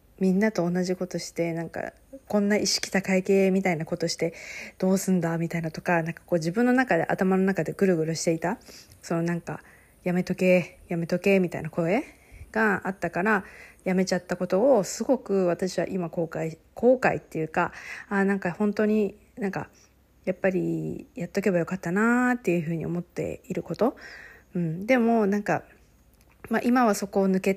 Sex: female